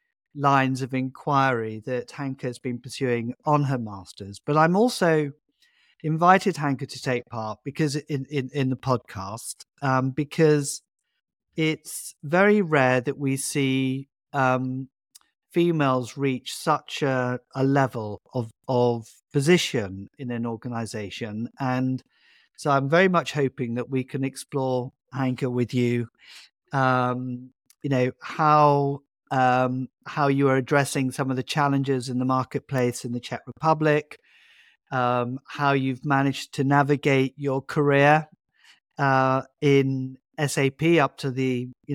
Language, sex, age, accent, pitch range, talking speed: English, male, 50-69, British, 125-145 Hz, 135 wpm